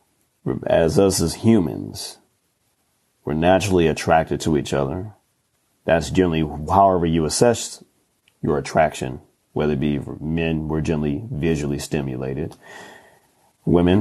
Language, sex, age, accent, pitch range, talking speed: English, male, 30-49, American, 75-90 Hz, 110 wpm